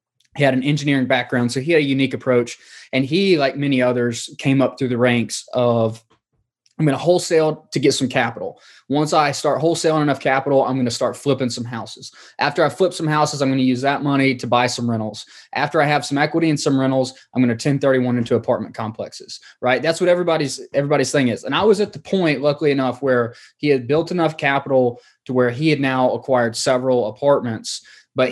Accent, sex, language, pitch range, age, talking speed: American, male, English, 125-145 Hz, 20-39, 220 wpm